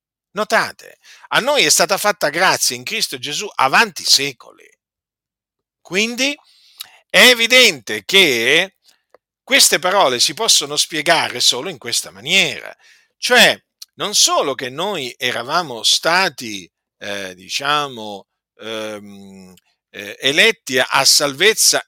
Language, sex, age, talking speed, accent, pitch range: Italian, male, 50-69, 105 wpm, native, 130-205 Hz